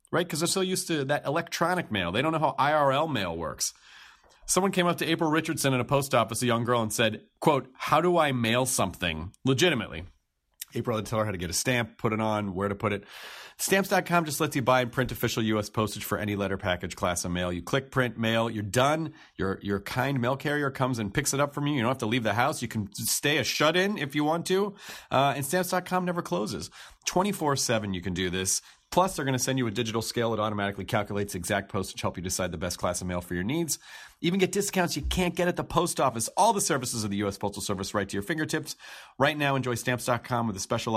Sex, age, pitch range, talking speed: male, 40-59, 105-155 Hz, 250 wpm